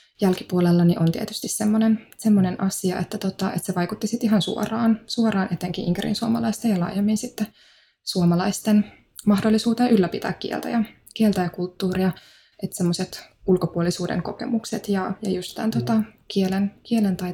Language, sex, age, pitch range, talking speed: Finnish, female, 20-39, 180-215 Hz, 145 wpm